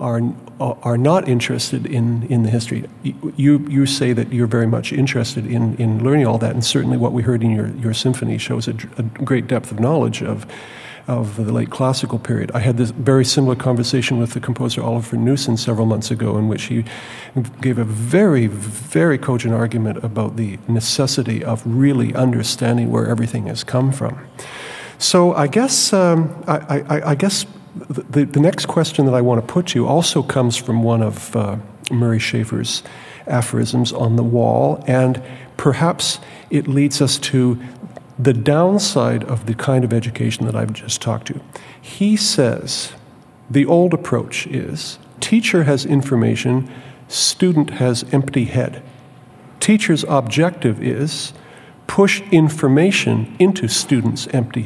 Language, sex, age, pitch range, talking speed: English, male, 50-69, 115-145 Hz, 160 wpm